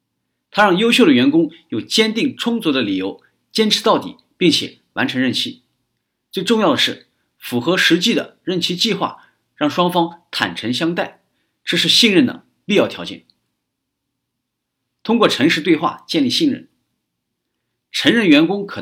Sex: male